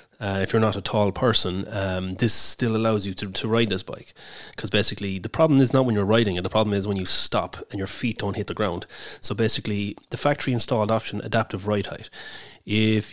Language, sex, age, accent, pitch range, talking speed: English, male, 30-49, Irish, 100-115 Hz, 230 wpm